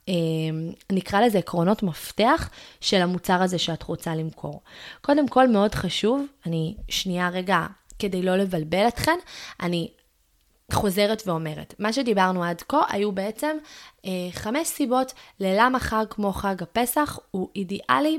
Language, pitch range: Hebrew, 170-210 Hz